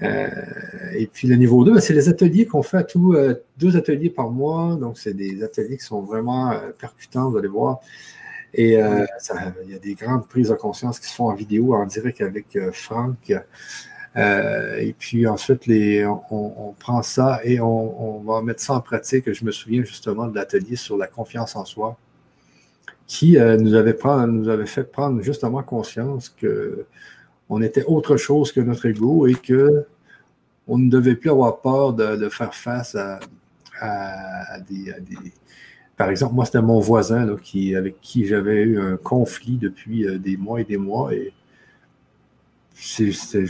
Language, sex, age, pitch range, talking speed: French, male, 50-69, 105-135 Hz, 185 wpm